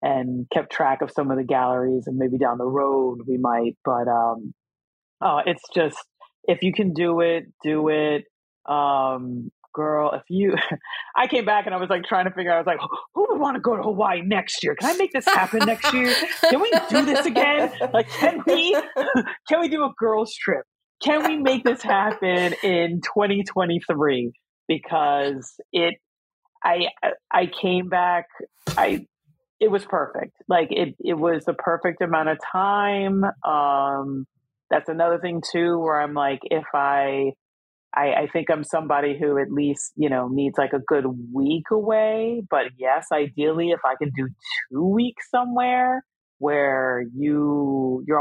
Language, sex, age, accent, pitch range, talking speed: English, female, 30-49, American, 140-215 Hz, 175 wpm